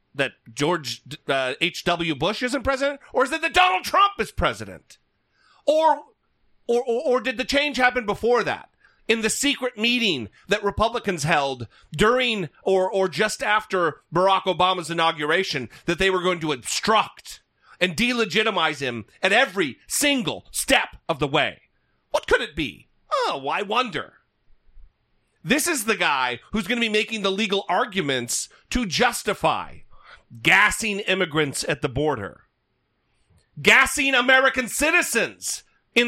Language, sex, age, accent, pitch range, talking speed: English, male, 40-59, American, 165-240 Hz, 145 wpm